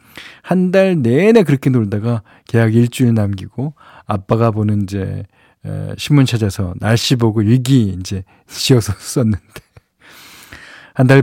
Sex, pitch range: male, 110-150 Hz